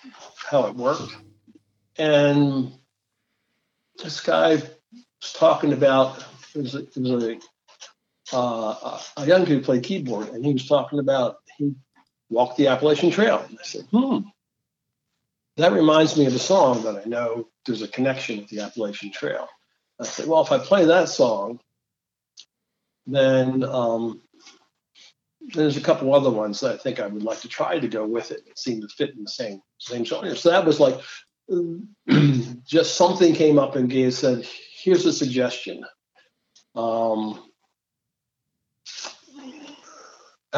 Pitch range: 115-155 Hz